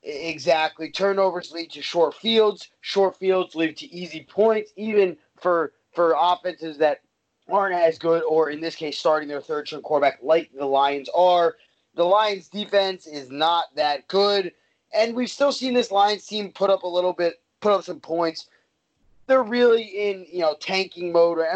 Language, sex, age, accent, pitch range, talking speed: English, male, 20-39, American, 150-190 Hz, 180 wpm